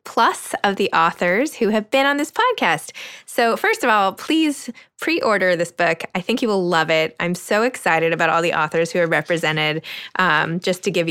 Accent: American